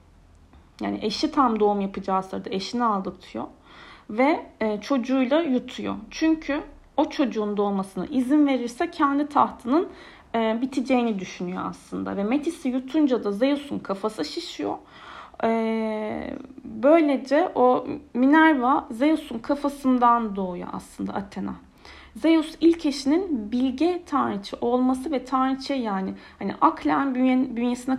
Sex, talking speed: female, 105 wpm